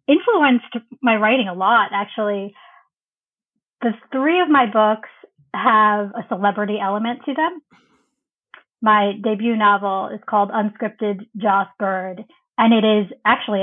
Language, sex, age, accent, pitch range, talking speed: English, female, 30-49, American, 200-230 Hz, 130 wpm